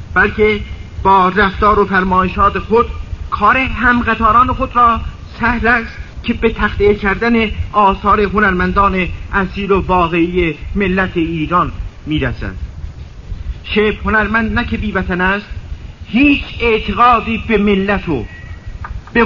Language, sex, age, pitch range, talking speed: Persian, male, 50-69, 170-220 Hz, 110 wpm